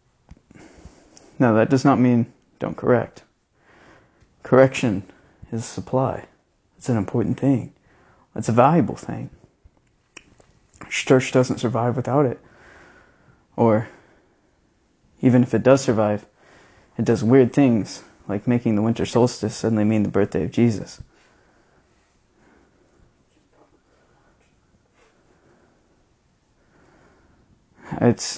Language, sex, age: English, male, 20-39